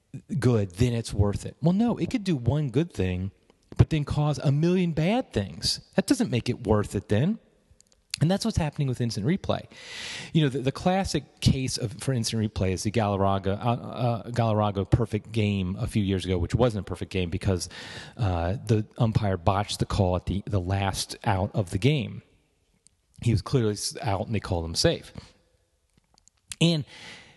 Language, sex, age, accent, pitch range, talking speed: English, male, 30-49, American, 100-140 Hz, 190 wpm